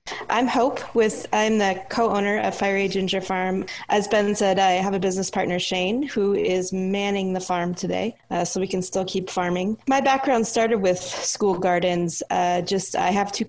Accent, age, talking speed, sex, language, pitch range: American, 20-39, 190 wpm, female, English, 185-215 Hz